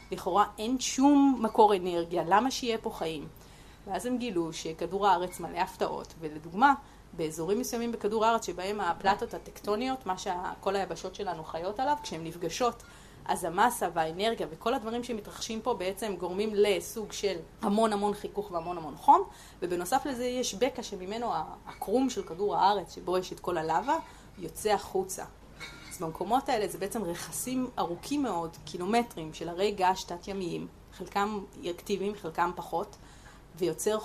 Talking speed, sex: 145 wpm, female